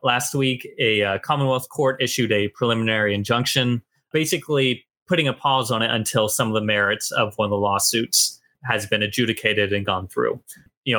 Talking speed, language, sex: 180 wpm, English, male